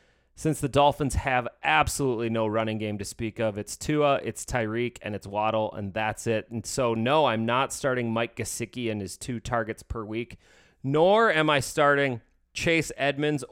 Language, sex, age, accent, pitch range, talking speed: English, male, 30-49, American, 110-145 Hz, 180 wpm